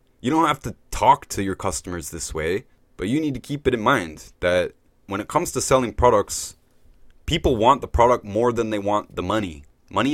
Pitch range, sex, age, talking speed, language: 90-110 Hz, male, 20-39, 215 wpm, English